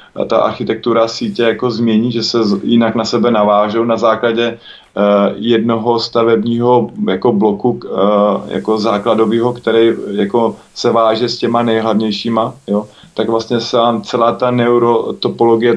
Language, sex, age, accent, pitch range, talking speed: Czech, male, 20-39, native, 110-120 Hz, 135 wpm